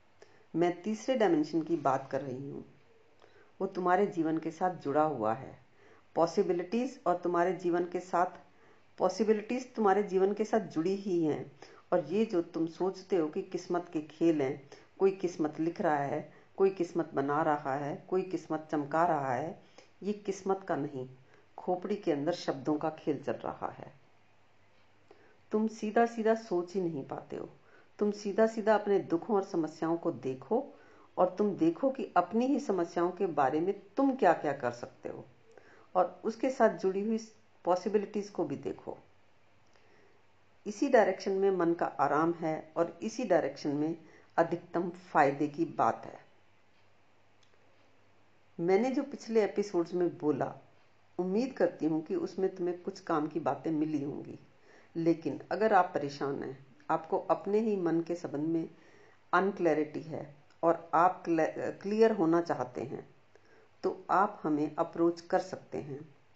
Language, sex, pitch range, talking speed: Hindi, female, 155-200 Hz, 155 wpm